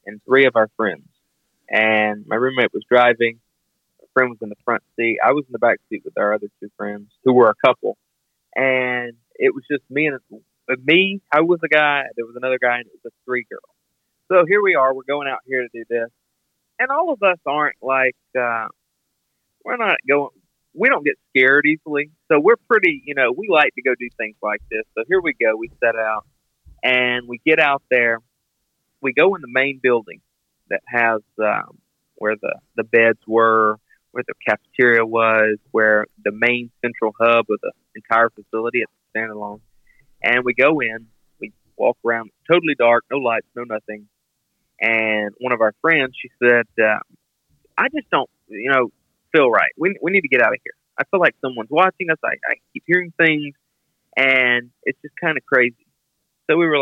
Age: 30-49